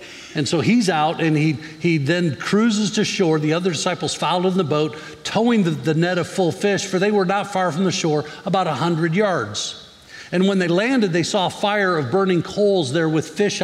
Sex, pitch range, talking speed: male, 140-175 Hz, 225 wpm